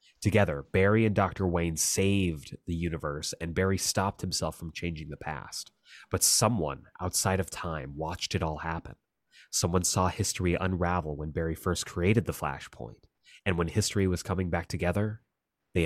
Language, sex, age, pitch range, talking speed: English, male, 30-49, 80-95 Hz, 165 wpm